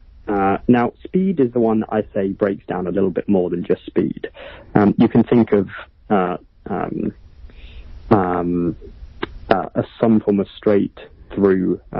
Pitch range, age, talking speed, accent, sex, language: 90-105 Hz, 30-49, 155 wpm, British, male, English